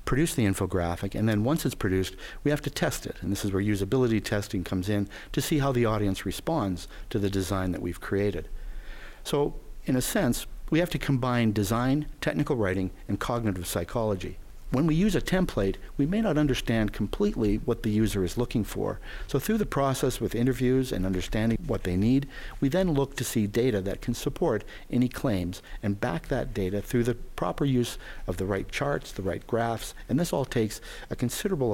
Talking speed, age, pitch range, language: 200 wpm, 50-69, 95-130 Hz, English